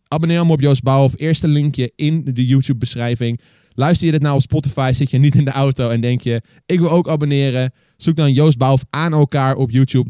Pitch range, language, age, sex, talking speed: 115-140 Hz, Dutch, 20-39, male, 220 wpm